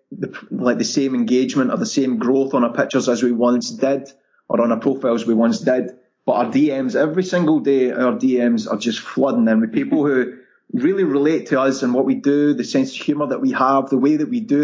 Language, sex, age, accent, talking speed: English, male, 20-39, British, 240 wpm